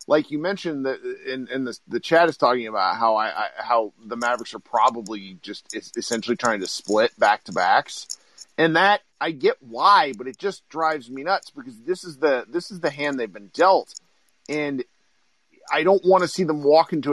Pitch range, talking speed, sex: 130-200 Hz, 210 wpm, male